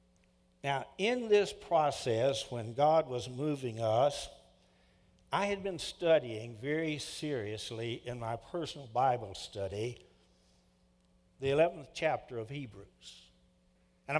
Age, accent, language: 60-79, American, English